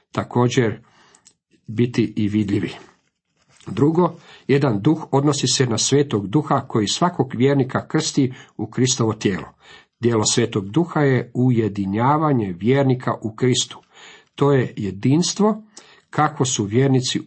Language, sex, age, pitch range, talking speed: Croatian, male, 50-69, 115-150 Hz, 115 wpm